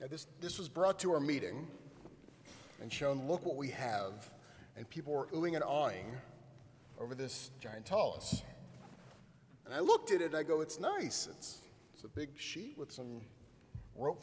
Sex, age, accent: male, 30-49, American